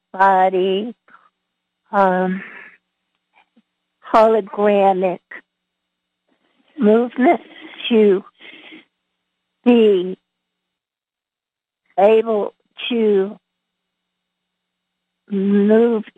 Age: 60-79